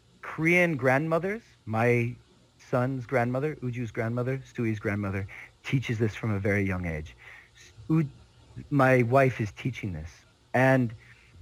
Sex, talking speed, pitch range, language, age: male, 115 wpm, 115-150 Hz, English, 40-59